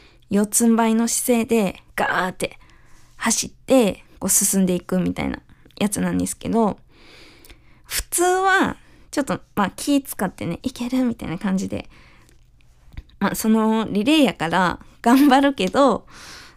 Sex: female